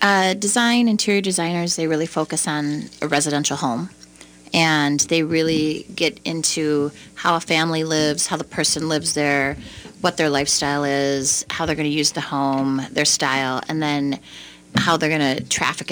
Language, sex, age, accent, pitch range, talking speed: English, female, 30-49, American, 145-185 Hz, 170 wpm